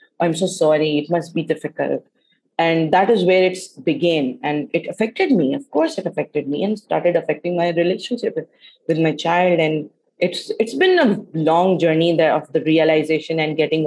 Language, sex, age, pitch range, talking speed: Urdu, female, 30-49, 160-185 Hz, 190 wpm